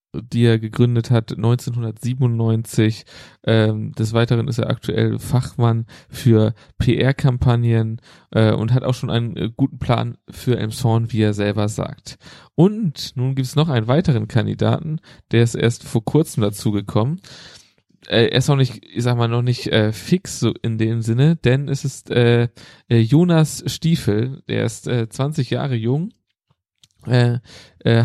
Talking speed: 160 wpm